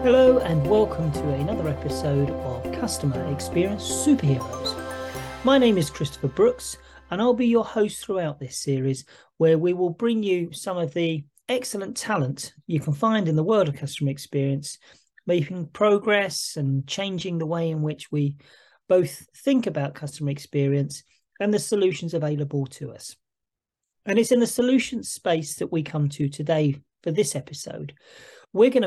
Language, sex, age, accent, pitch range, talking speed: English, male, 40-59, British, 145-200 Hz, 160 wpm